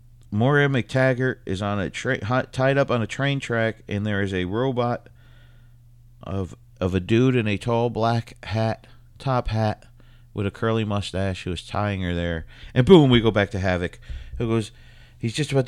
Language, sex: English, male